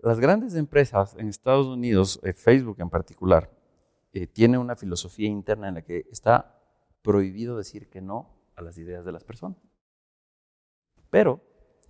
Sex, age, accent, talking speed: male, 40-59, Mexican, 145 wpm